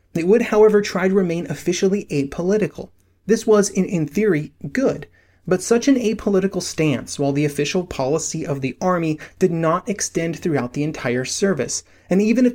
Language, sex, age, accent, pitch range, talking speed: English, male, 30-49, American, 140-185 Hz, 170 wpm